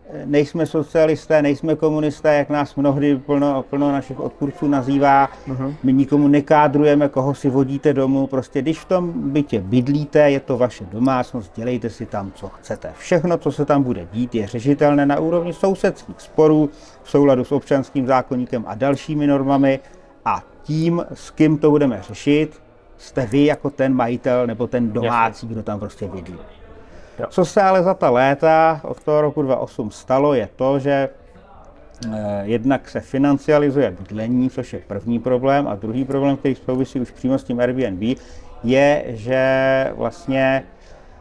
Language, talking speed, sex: Czech, 155 wpm, male